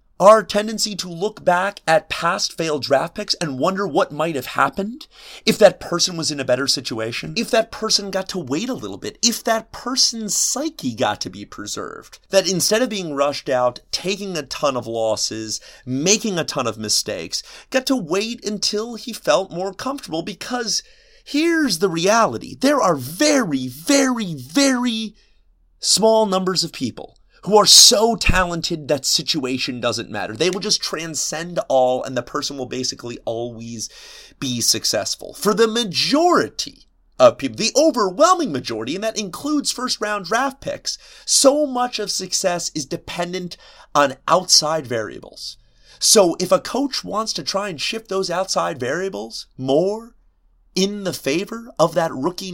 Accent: American